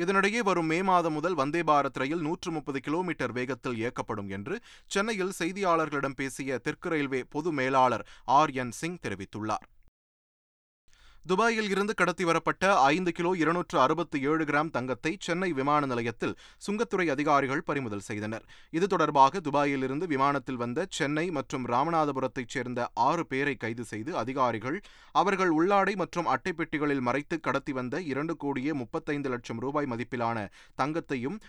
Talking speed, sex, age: 120 wpm, male, 30-49